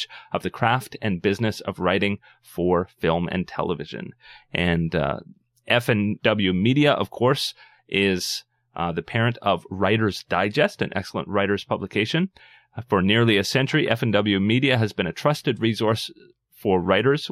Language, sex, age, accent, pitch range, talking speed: English, male, 30-49, American, 100-135 Hz, 140 wpm